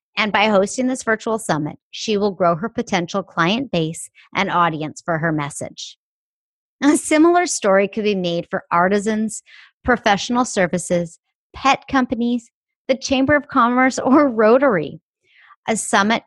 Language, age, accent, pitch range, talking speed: English, 30-49, American, 170-235 Hz, 140 wpm